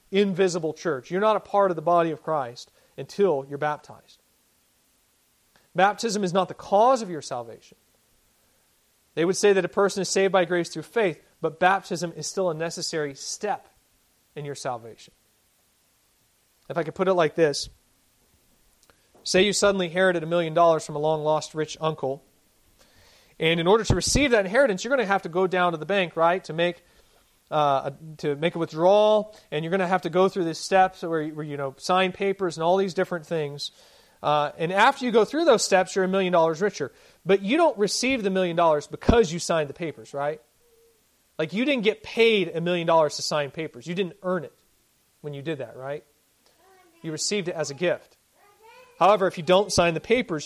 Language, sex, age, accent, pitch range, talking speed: English, male, 40-59, American, 155-195 Hz, 200 wpm